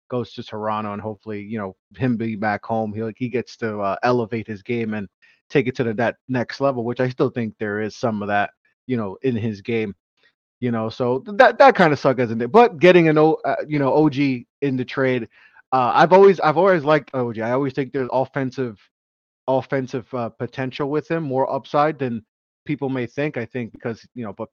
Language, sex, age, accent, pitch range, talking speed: English, male, 30-49, American, 110-135 Hz, 225 wpm